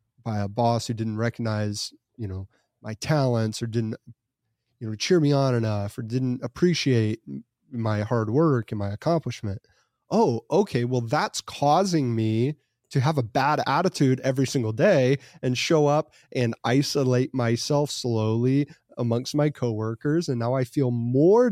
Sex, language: male, English